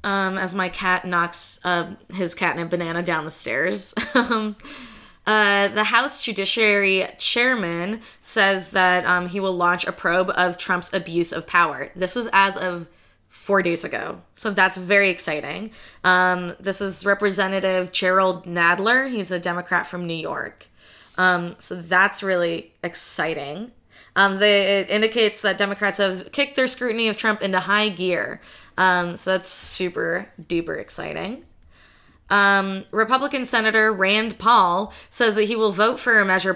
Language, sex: English, female